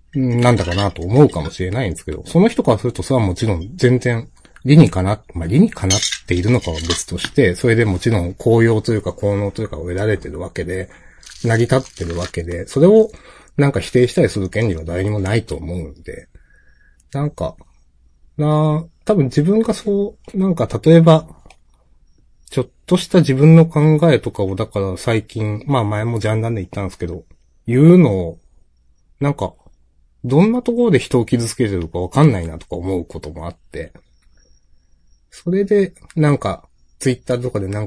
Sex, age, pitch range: male, 30-49, 85-130 Hz